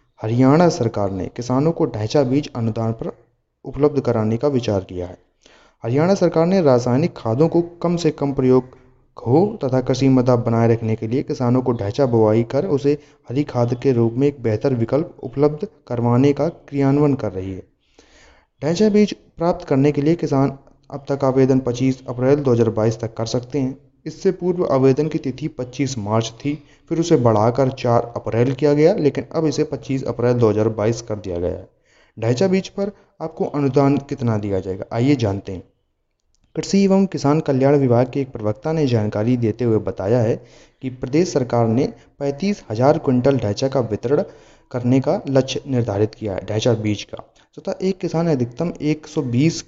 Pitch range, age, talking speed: 115-150 Hz, 30-49, 175 wpm